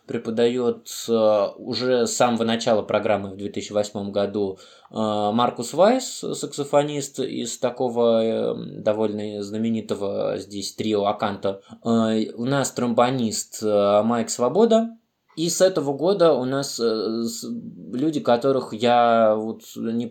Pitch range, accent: 105-120 Hz, native